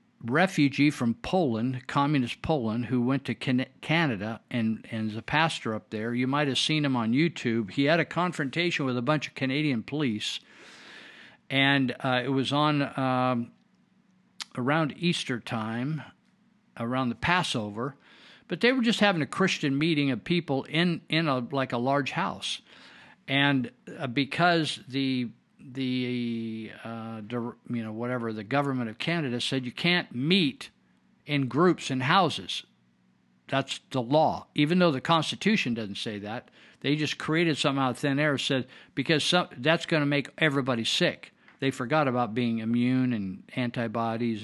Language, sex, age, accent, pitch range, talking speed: English, male, 50-69, American, 120-155 Hz, 155 wpm